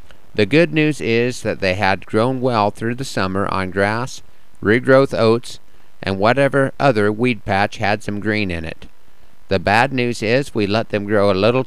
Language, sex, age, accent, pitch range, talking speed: English, male, 50-69, American, 100-125 Hz, 185 wpm